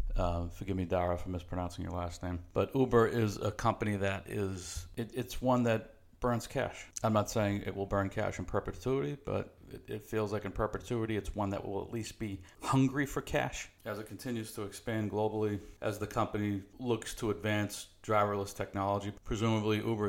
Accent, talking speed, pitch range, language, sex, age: American, 190 wpm, 95-110 Hz, English, male, 50-69